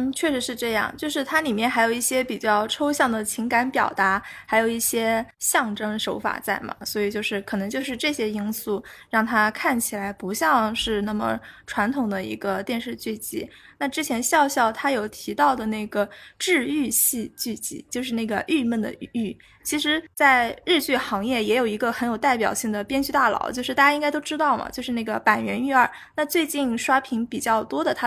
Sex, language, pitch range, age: female, Chinese, 220-275 Hz, 20-39